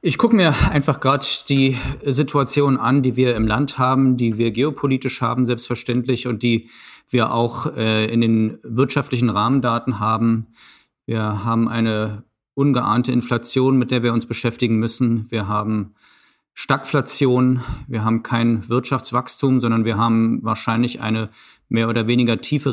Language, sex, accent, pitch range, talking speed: German, male, German, 115-130 Hz, 145 wpm